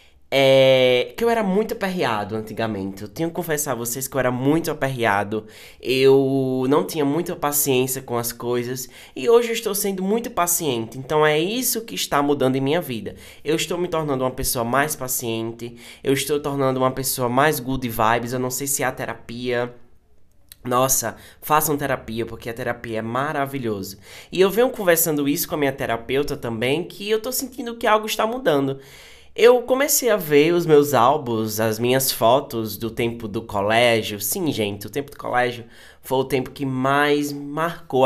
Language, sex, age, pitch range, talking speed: Portuguese, male, 10-29, 115-160 Hz, 185 wpm